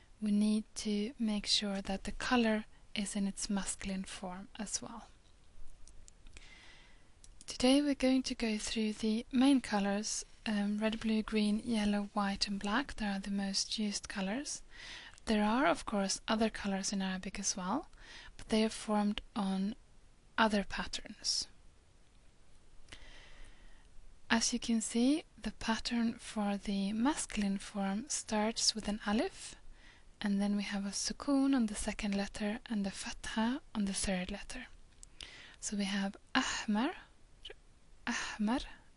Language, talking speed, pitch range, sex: English, 140 wpm, 200-230 Hz, female